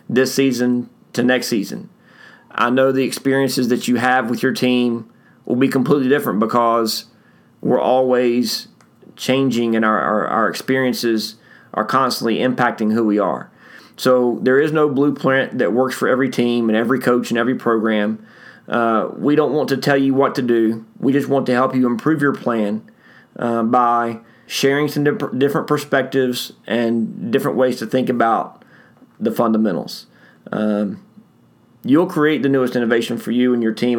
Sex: male